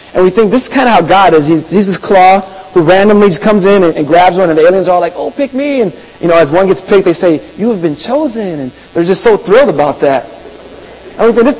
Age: 30-49